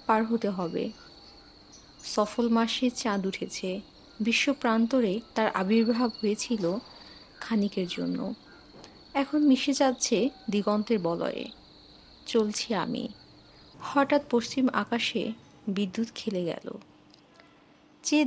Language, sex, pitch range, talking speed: Bengali, female, 205-270 Hz, 90 wpm